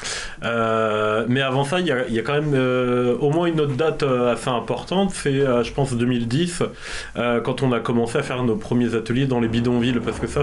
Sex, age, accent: male, 30-49, French